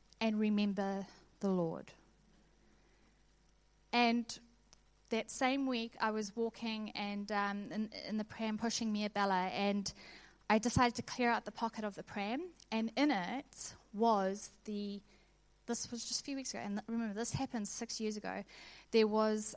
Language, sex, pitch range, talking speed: English, female, 195-230 Hz, 165 wpm